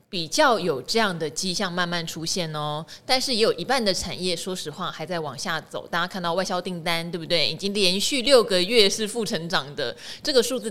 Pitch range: 170-235 Hz